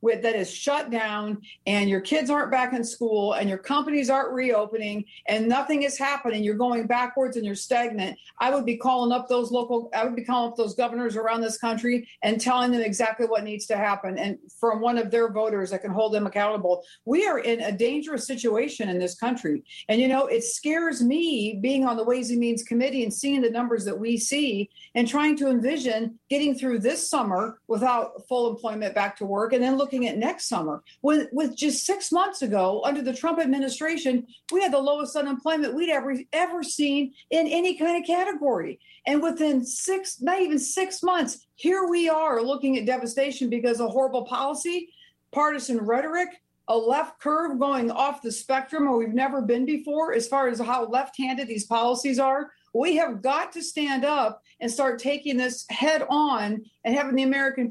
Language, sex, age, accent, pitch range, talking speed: English, female, 50-69, American, 230-290 Hz, 200 wpm